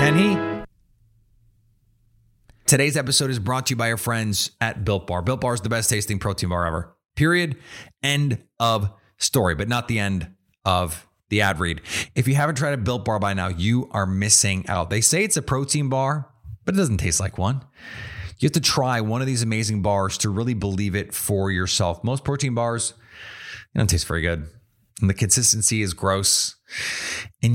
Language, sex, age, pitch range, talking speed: English, male, 30-49, 95-120 Hz, 190 wpm